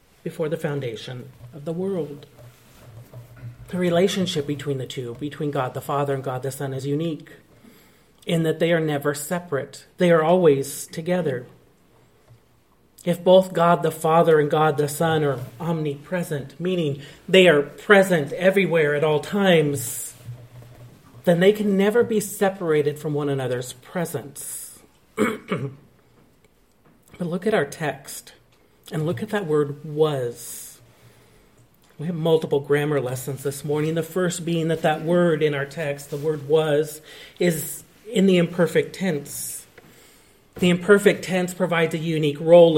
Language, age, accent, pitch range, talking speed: English, 40-59, American, 145-180 Hz, 145 wpm